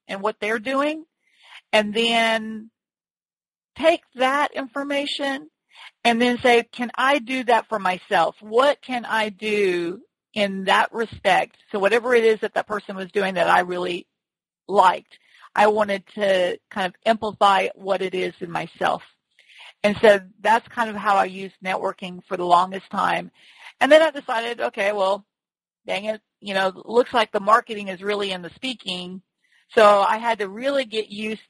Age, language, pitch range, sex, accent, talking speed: 40-59, English, 190-240 Hz, female, American, 170 wpm